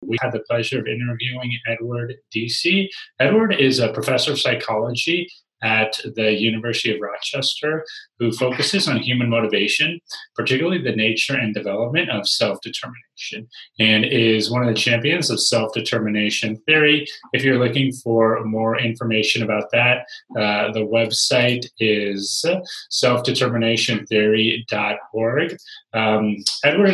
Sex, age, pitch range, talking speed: male, 30-49, 110-140 Hz, 125 wpm